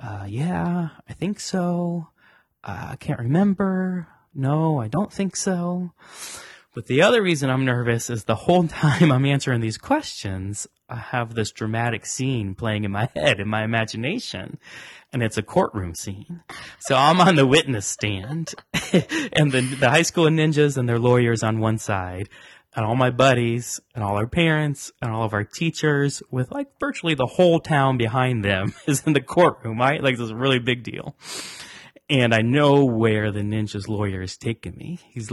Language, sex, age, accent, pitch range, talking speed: English, male, 20-39, American, 110-155 Hz, 180 wpm